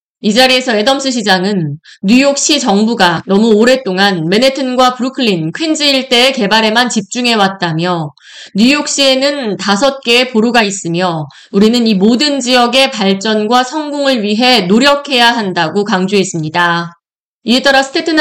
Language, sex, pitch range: Korean, female, 195-270 Hz